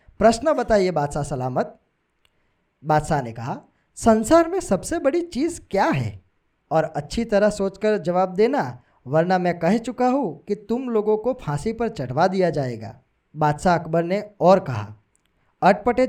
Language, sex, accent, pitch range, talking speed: Gujarati, male, native, 140-230 Hz, 150 wpm